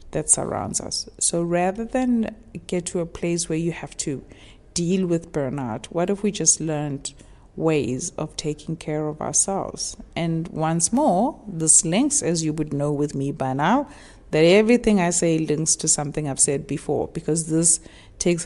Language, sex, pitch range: English, female, 145-170 Hz